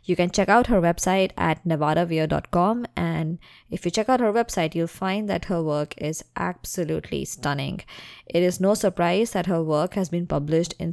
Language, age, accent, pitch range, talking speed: English, 20-39, Indian, 155-185 Hz, 185 wpm